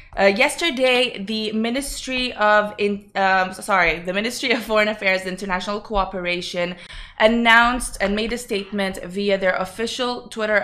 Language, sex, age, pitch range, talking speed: Arabic, female, 20-39, 180-215 Hz, 130 wpm